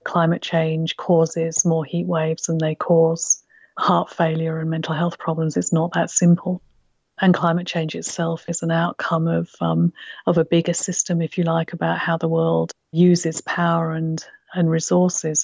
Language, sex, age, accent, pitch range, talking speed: English, female, 40-59, British, 160-175 Hz, 170 wpm